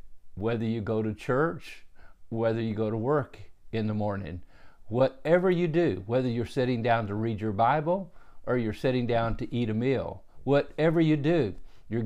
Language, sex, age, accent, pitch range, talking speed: English, male, 50-69, American, 110-140 Hz, 180 wpm